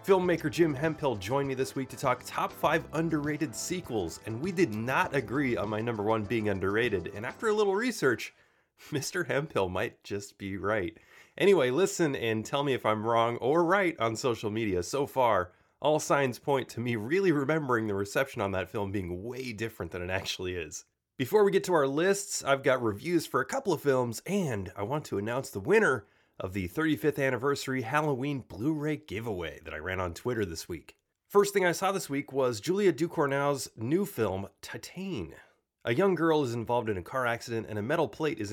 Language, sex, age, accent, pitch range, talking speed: English, male, 30-49, American, 110-155 Hz, 200 wpm